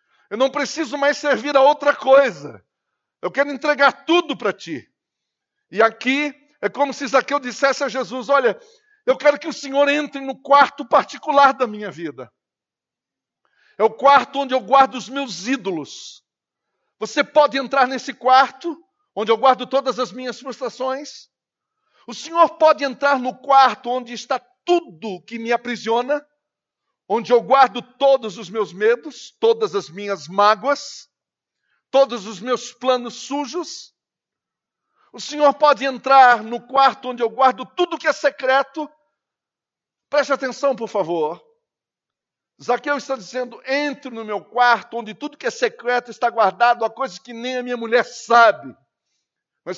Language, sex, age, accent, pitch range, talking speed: Portuguese, male, 60-79, Brazilian, 240-285 Hz, 150 wpm